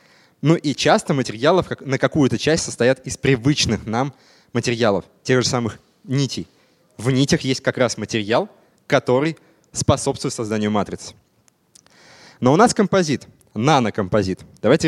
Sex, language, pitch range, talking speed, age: male, Russian, 120-160 Hz, 130 wpm, 20-39